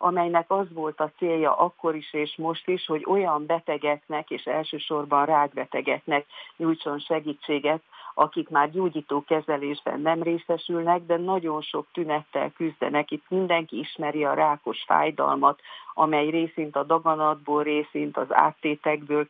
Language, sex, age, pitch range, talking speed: Hungarian, female, 50-69, 150-165 Hz, 130 wpm